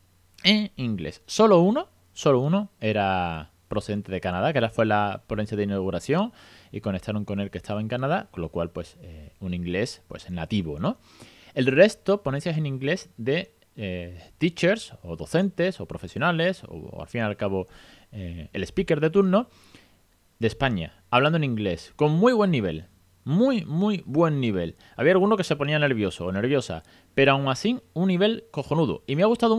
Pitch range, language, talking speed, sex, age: 100-150 Hz, Spanish, 185 wpm, male, 30-49